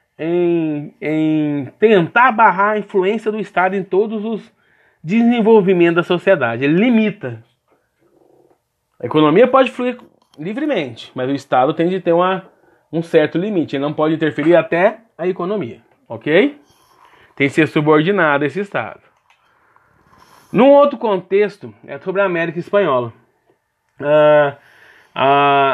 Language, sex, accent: Portuguese, male, Brazilian